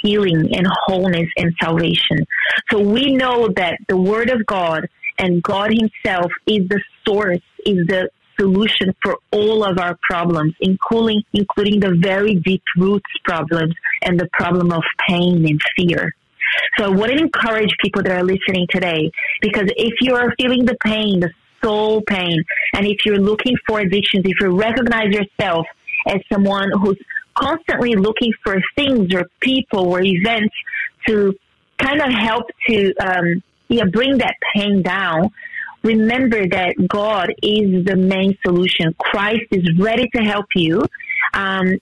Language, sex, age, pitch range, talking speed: English, female, 30-49, 185-225 Hz, 155 wpm